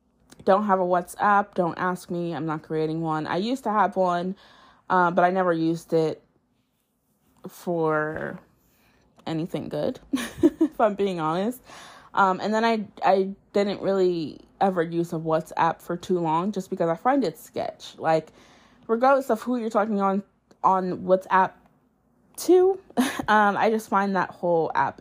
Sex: female